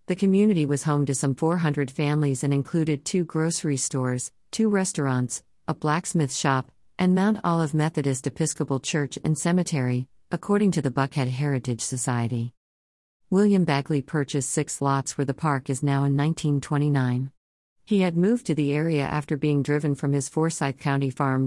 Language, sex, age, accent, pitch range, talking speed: English, female, 50-69, American, 130-155 Hz, 160 wpm